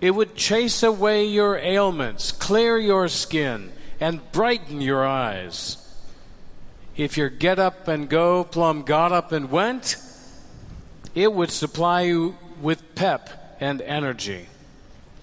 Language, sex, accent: English, male, American